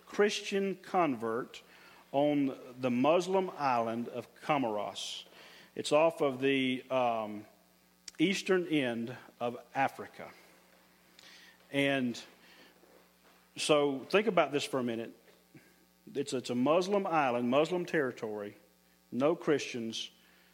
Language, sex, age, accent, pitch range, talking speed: English, male, 50-69, American, 105-145 Hz, 100 wpm